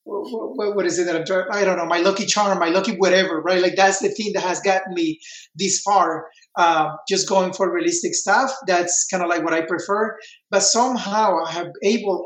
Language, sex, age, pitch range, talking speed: English, male, 30-49, 175-210 Hz, 205 wpm